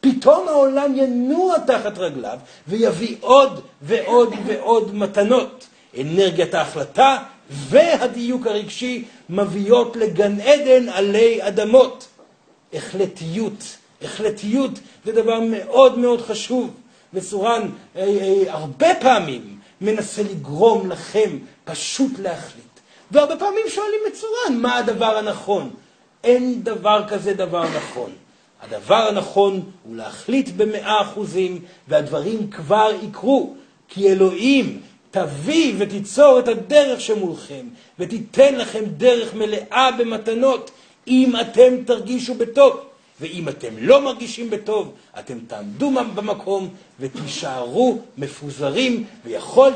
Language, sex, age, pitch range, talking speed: Hebrew, male, 40-59, 195-255 Hz, 105 wpm